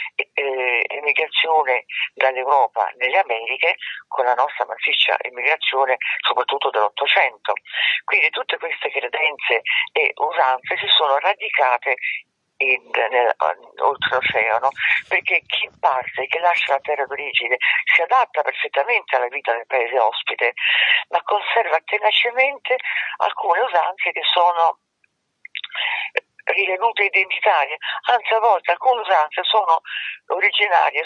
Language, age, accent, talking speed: Italian, 50-69, native, 110 wpm